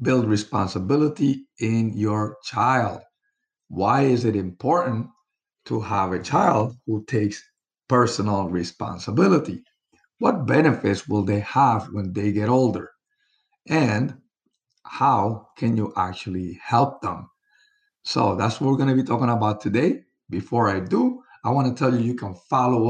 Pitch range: 105-150 Hz